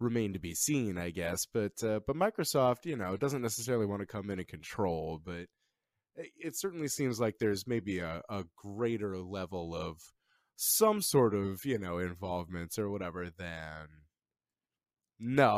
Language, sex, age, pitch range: English, male, 20-39, 90-120 Hz